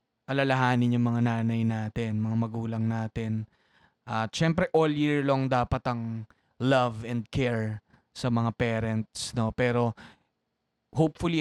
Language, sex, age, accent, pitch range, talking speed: Filipino, male, 20-39, native, 115-145 Hz, 125 wpm